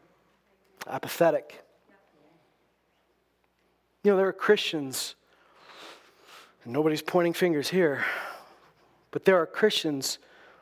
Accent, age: American, 40-59